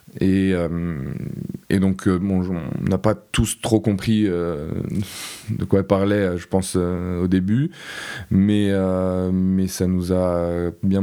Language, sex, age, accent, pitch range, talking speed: French, male, 20-39, French, 90-100 Hz, 160 wpm